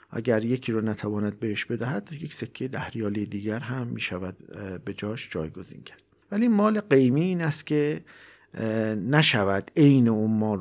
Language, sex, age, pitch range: Persian, male, 50-69, 105-135 Hz